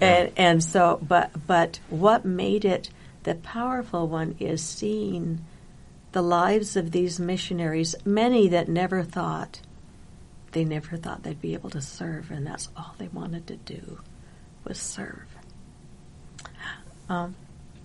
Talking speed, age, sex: 135 wpm, 60-79, female